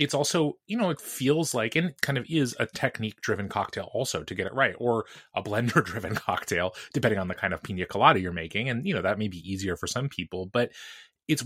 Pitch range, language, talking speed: 95-120 Hz, English, 245 wpm